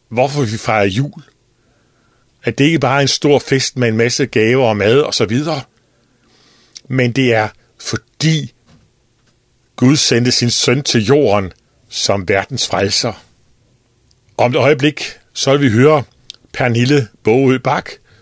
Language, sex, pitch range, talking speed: Danish, male, 120-135 Hz, 140 wpm